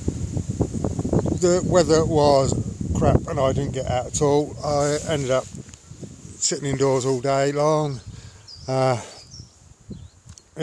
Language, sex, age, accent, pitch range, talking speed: English, male, 50-69, British, 115-145 Hz, 115 wpm